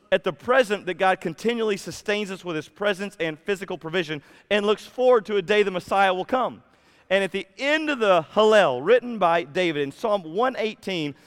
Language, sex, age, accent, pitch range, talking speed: English, male, 40-59, American, 145-210 Hz, 195 wpm